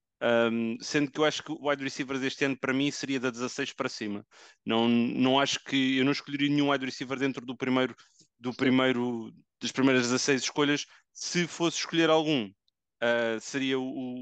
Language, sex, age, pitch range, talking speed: English, male, 30-49, 120-145 Hz, 175 wpm